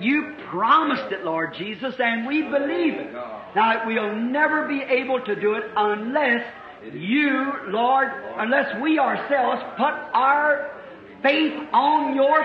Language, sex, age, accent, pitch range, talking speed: English, male, 50-69, American, 220-295 Hz, 135 wpm